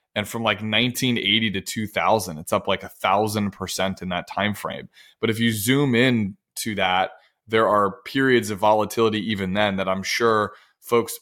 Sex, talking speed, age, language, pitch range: male, 170 wpm, 20-39, English, 100-125 Hz